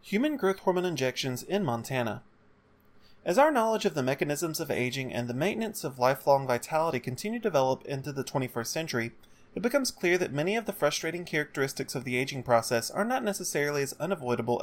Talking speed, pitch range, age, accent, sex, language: 185 wpm, 130-195 Hz, 30-49, American, male, English